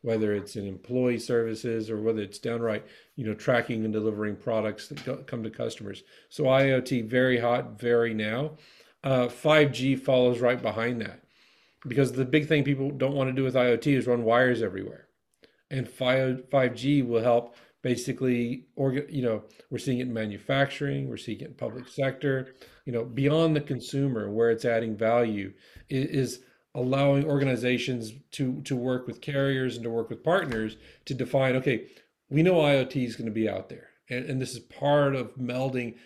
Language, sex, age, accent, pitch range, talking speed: English, male, 40-59, American, 115-135 Hz, 180 wpm